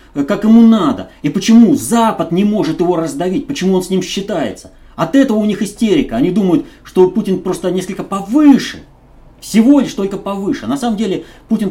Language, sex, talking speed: Russian, male, 180 wpm